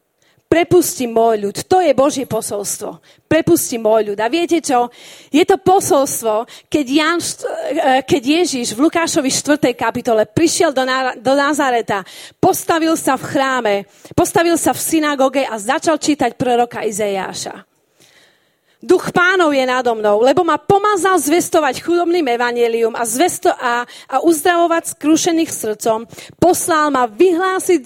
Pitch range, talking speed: 240-335 Hz, 130 wpm